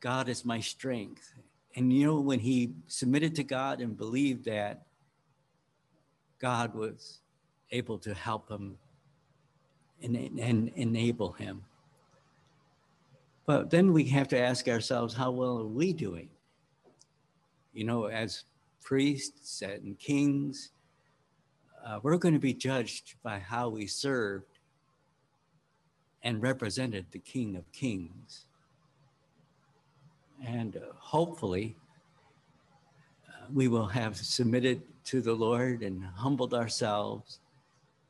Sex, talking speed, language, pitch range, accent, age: male, 115 wpm, English, 115-150 Hz, American, 60-79